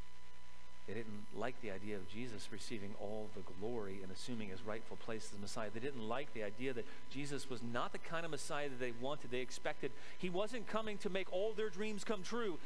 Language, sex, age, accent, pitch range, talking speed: English, male, 40-59, American, 125-210 Hz, 220 wpm